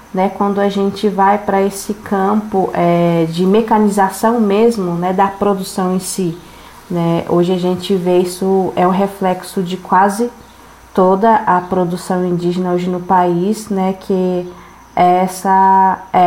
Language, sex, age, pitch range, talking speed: Portuguese, female, 20-39, 185-205 Hz, 135 wpm